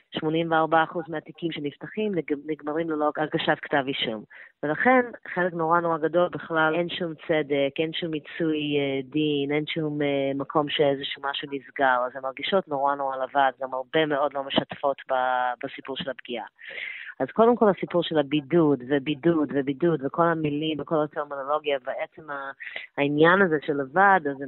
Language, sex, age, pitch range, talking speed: Hebrew, female, 20-39, 140-165 Hz, 145 wpm